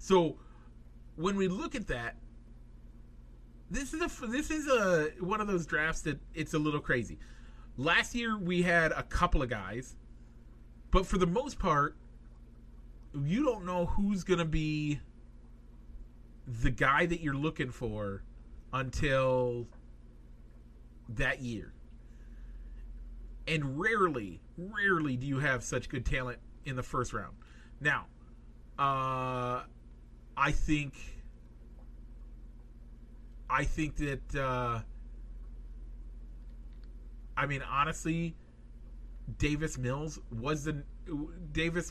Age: 40-59